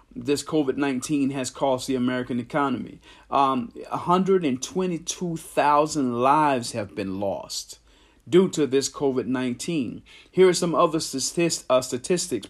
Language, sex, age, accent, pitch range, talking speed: English, male, 40-59, American, 125-155 Hz, 145 wpm